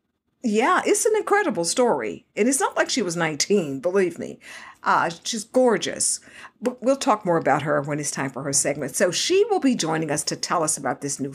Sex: female